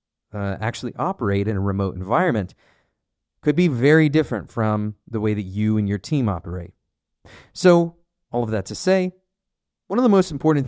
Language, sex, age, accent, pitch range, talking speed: English, male, 30-49, American, 100-145 Hz, 175 wpm